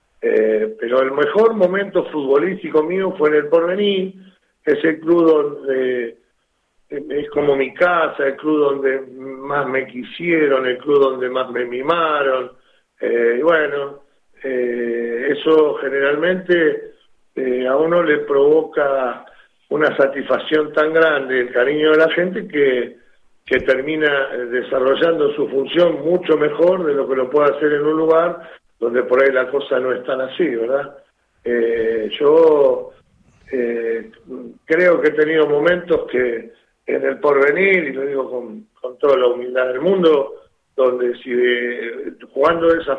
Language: Spanish